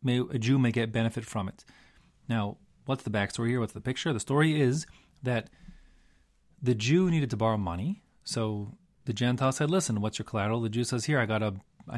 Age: 30-49